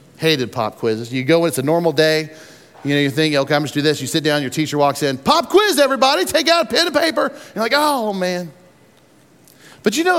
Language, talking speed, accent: English, 245 wpm, American